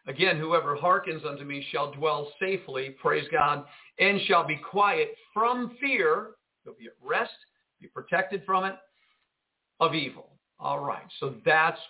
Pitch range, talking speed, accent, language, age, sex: 140-190 Hz, 150 wpm, American, English, 50-69, male